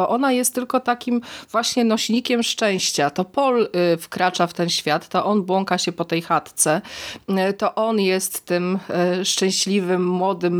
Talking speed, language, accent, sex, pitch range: 145 wpm, Polish, native, female, 180-225 Hz